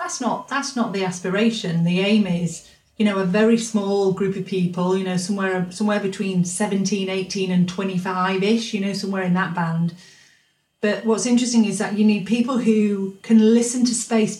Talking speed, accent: 190 wpm, British